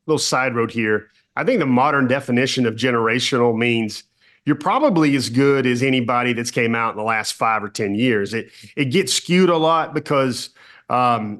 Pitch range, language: 120-145 Hz, English